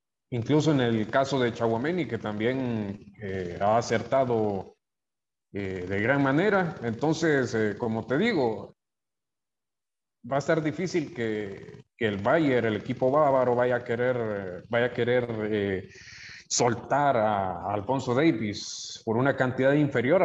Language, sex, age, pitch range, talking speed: English, male, 30-49, 105-135 Hz, 135 wpm